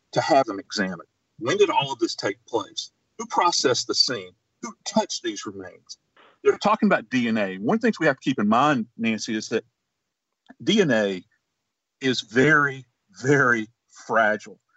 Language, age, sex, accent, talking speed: English, 40-59, male, American, 160 wpm